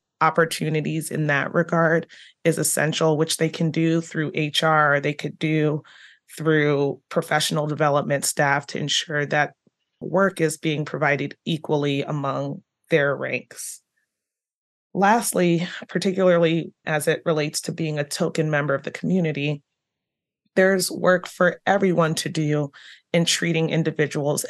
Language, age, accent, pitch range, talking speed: English, 30-49, American, 150-170 Hz, 130 wpm